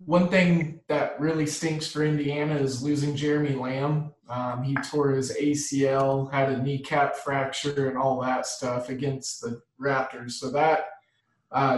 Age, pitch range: 20-39, 135-155 Hz